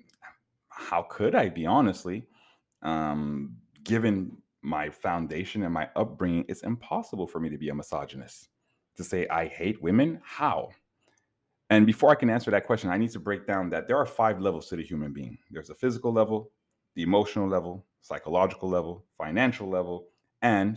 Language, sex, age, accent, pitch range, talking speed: English, male, 30-49, American, 85-105 Hz, 170 wpm